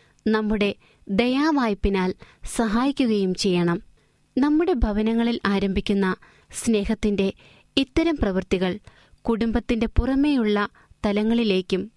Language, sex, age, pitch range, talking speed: Malayalam, female, 20-39, 200-260 Hz, 65 wpm